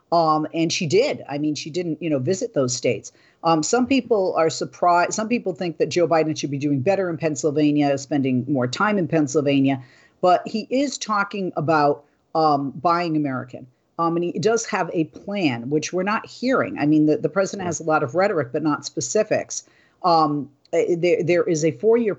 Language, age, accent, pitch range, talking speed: English, 50-69, American, 140-175 Hz, 195 wpm